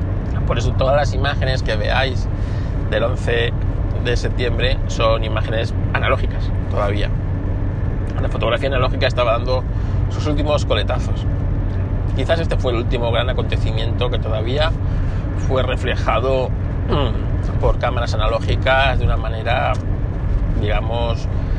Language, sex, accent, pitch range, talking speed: Spanish, male, Spanish, 95-115 Hz, 115 wpm